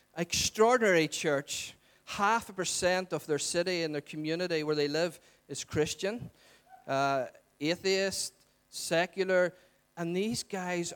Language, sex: English, male